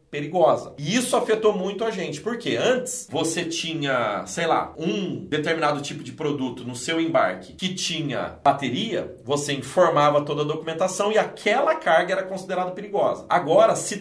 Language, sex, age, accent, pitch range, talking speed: Portuguese, male, 40-59, Brazilian, 140-200 Hz, 160 wpm